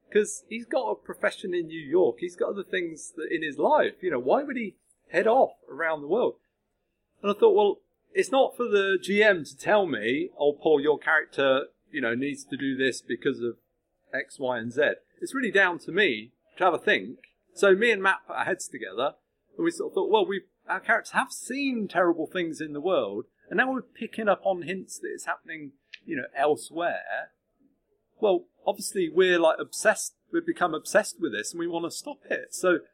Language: English